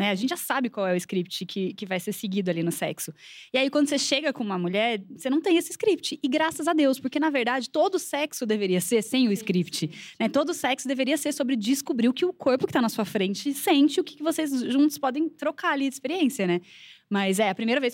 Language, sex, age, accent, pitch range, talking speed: Portuguese, female, 20-39, Brazilian, 225-335 Hz, 250 wpm